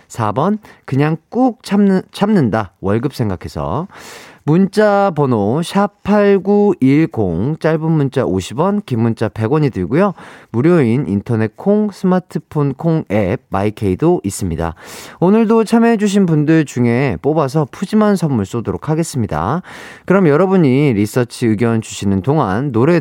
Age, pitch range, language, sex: 40-59, 110-175 Hz, Korean, male